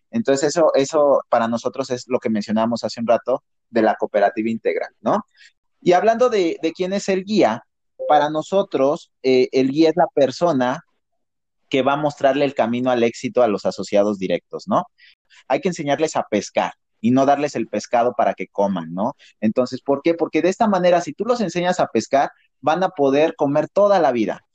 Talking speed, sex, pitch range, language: 195 wpm, male, 115-155 Hz, Spanish